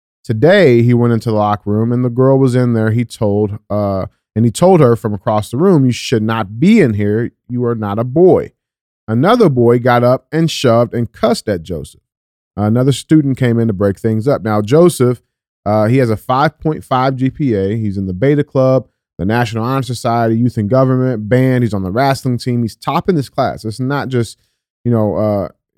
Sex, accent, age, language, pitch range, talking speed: male, American, 30-49, English, 110-140 Hz, 215 wpm